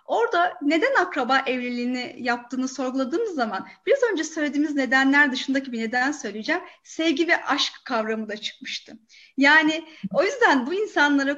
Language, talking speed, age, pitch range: Turkish, 135 wpm, 30-49, 245-315 Hz